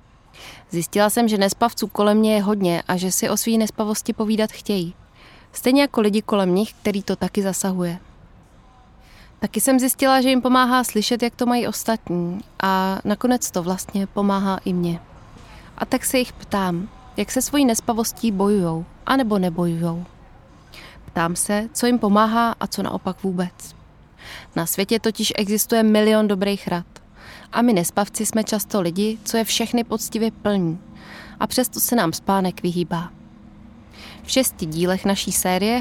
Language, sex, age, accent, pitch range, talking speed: Czech, female, 20-39, native, 175-220 Hz, 155 wpm